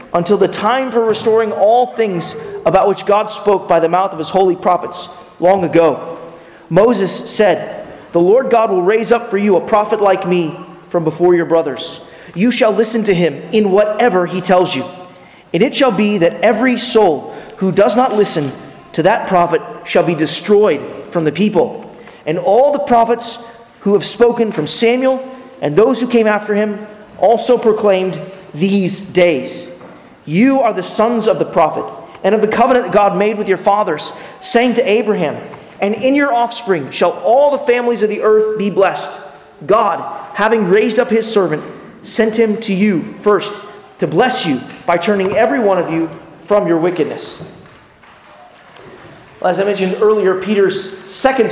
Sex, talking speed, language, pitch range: male, 175 wpm, English, 180-225 Hz